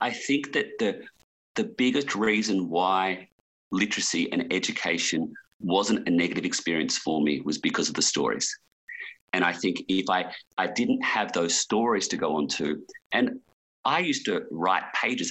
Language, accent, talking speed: English, Australian, 165 wpm